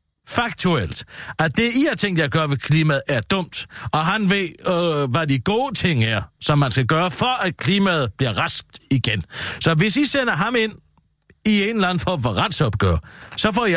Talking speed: 210 wpm